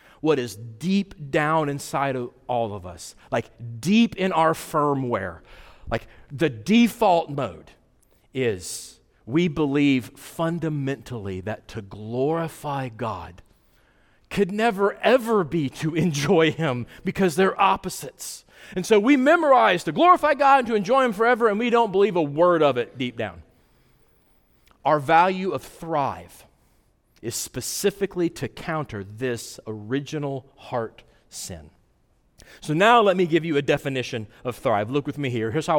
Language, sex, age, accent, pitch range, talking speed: English, male, 40-59, American, 125-200 Hz, 145 wpm